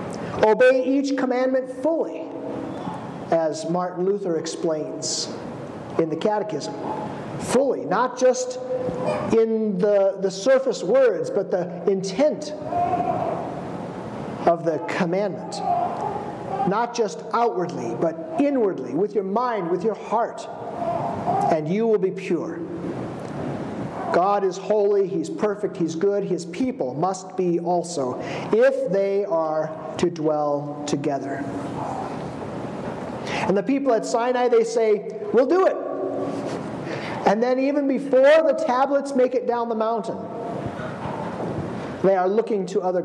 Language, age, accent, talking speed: English, 50-69, American, 120 wpm